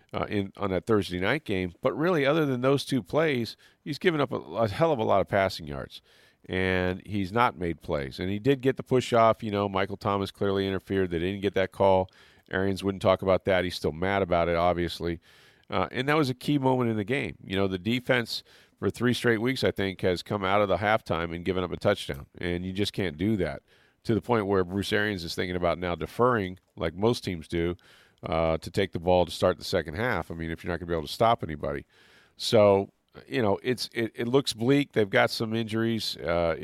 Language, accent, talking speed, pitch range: English, American, 240 wpm, 90-110 Hz